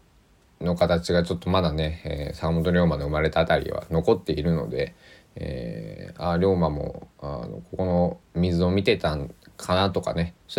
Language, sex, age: Japanese, male, 20-39